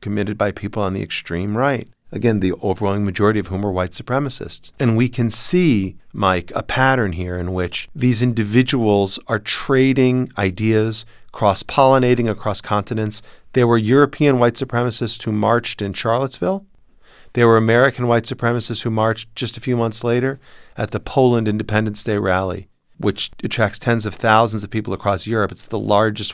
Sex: male